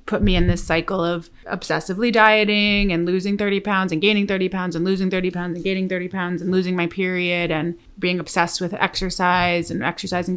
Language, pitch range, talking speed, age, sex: English, 170-200 Hz, 205 wpm, 30-49, female